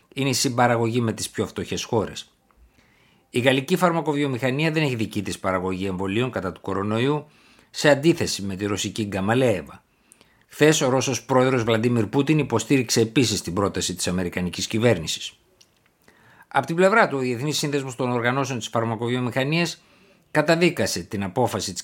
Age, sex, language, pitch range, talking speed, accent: 60-79, male, Greek, 105-140 Hz, 150 wpm, native